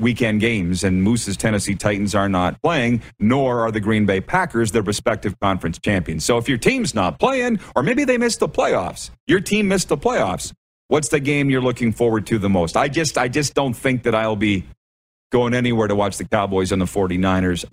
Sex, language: male, English